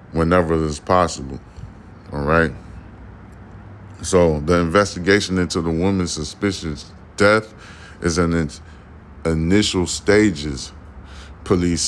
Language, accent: English, American